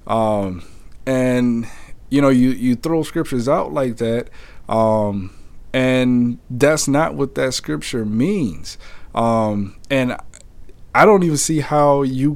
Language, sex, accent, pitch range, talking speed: English, male, American, 110-140 Hz, 130 wpm